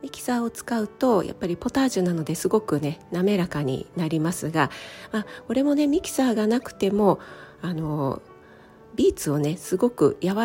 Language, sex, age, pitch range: Japanese, female, 40-59, 155-225 Hz